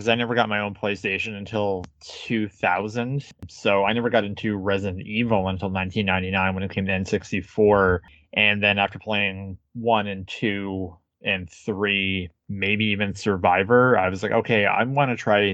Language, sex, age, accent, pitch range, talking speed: English, male, 20-39, American, 95-115 Hz, 160 wpm